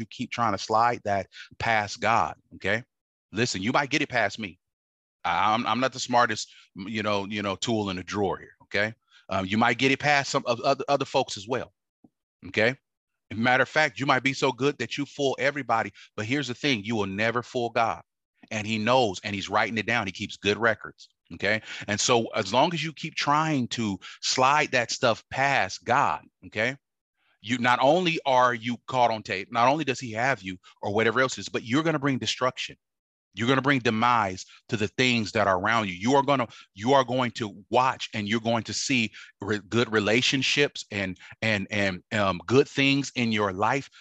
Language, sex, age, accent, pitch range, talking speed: English, male, 30-49, American, 105-130 Hz, 215 wpm